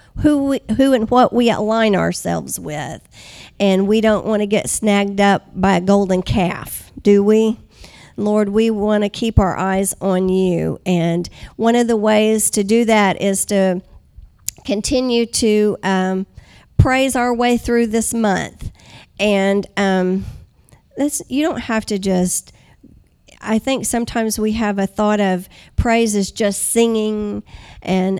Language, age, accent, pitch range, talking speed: English, 50-69, American, 185-220 Hz, 155 wpm